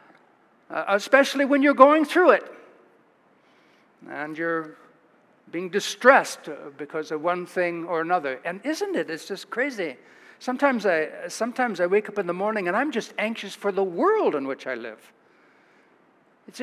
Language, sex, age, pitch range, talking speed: English, male, 60-79, 175-250 Hz, 155 wpm